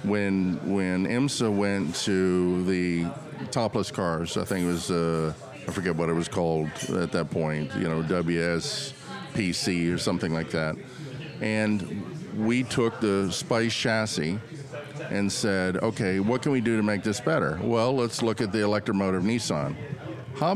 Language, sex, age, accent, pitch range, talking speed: English, male, 50-69, American, 95-125 Hz, 160 wpm